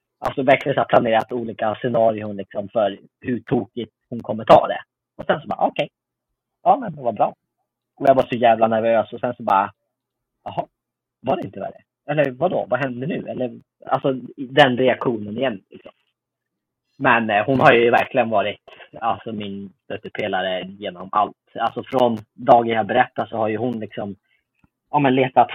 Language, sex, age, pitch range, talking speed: Swedish, male, 30-49, 110-125 Hz, 175 wpm